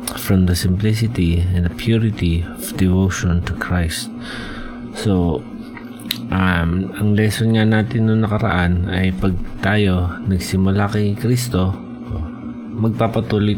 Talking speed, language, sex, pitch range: 110 wpm, Filipino, male, 90-100 Hz